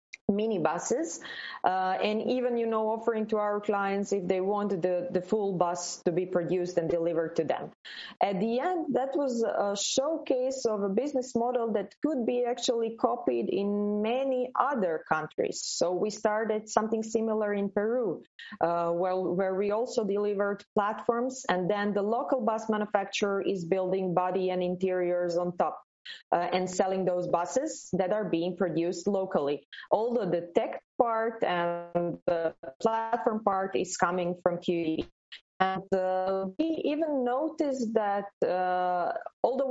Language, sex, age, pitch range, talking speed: English, female, 20-39, 185-230 Hz, 155 wpm